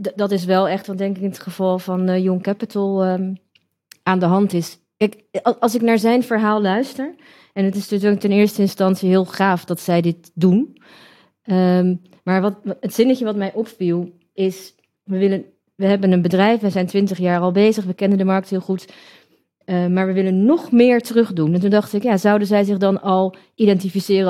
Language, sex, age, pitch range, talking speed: Dutch, female, 30-49, 175-200 Hz, 205 wpm